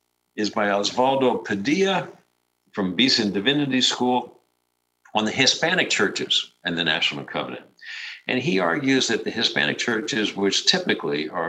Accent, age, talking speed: American, 60-79, 135 wpm